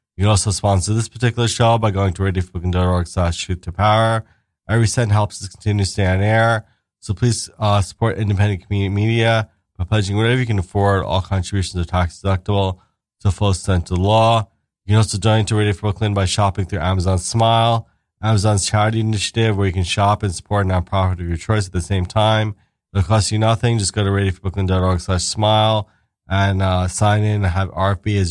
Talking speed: 200 wpm